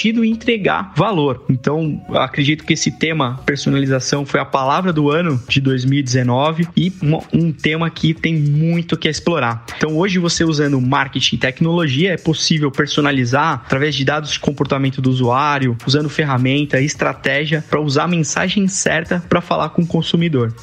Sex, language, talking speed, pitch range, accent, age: male, Portuguese, 155 wpm, 130-165 Hz, Brazilian, 20-39